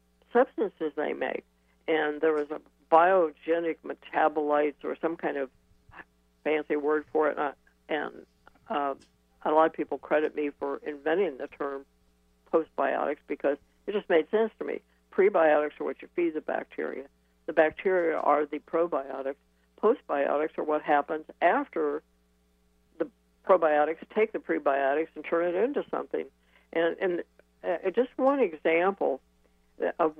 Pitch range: 140-165 Hz